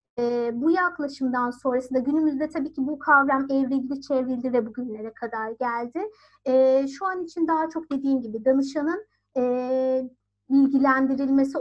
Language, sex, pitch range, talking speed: Turkish, female, 245-315 Hz, 135 wpm